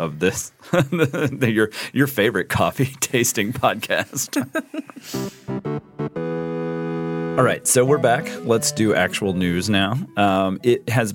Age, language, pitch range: 40-59, English, 85-110 Hz